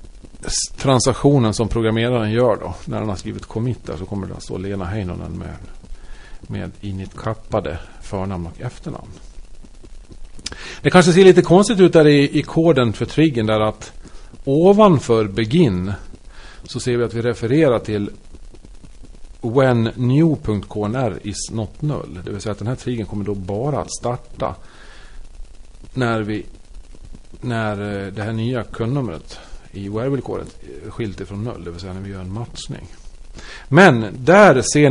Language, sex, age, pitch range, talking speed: Swedish, male, 40-59, 95-125 Hz, 150 wpm